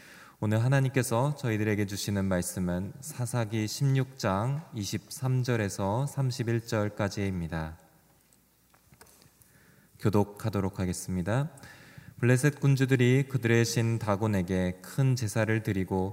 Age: 20-39